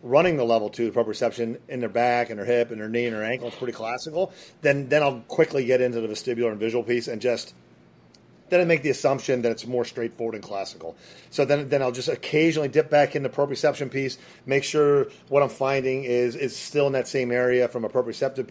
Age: 30-49